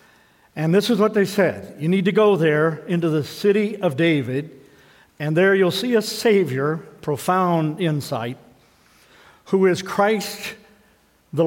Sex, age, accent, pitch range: male, 50-69, American, 160-205 Hz